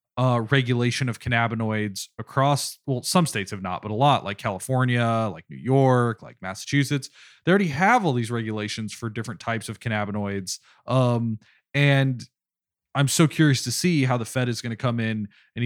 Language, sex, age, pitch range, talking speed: English, male, 20-39, 110-140 Hz, 180 wpm